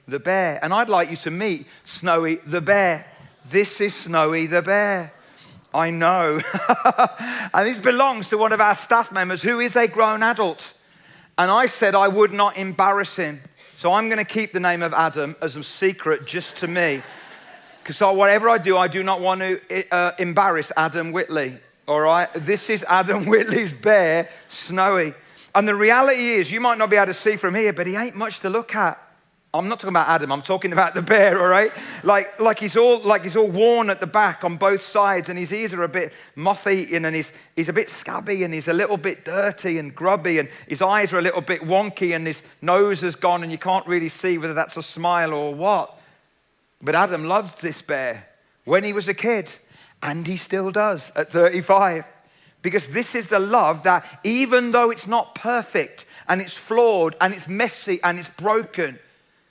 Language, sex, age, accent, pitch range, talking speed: English, male, 40-59, British, 170-210 Hz, 205 wpm